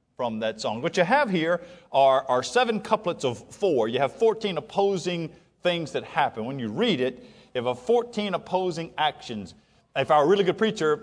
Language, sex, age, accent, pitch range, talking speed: English, male, 50-69, American, 130-200 Hz, 200 wpm